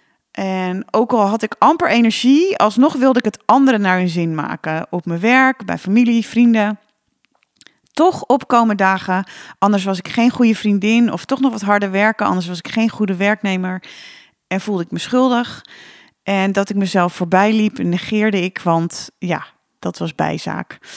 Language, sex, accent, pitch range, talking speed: Dutch, female, Dutch, 185-235 Hz, 175 wpm